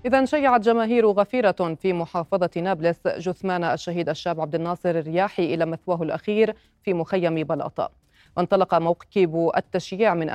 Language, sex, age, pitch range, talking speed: Arabic, female, 30-49, 170-195 Hz, 135 wpm